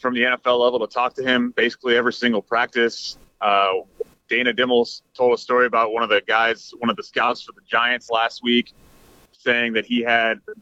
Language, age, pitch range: English, 30-49, 120-155 Hz